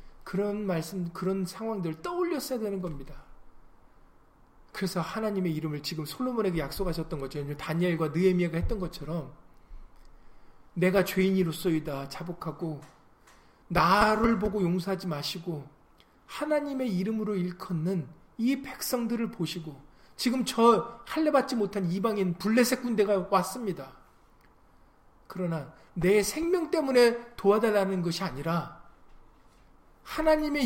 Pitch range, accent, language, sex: 150-225 Hz, native, Korean, male